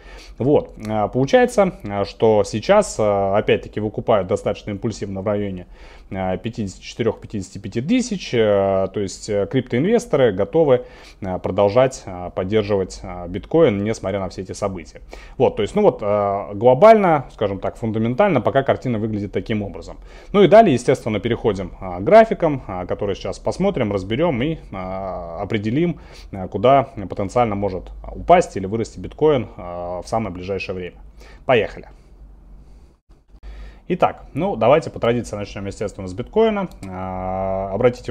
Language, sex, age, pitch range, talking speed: Russian, male, 30-49, 95-125 Hz, 115 wpm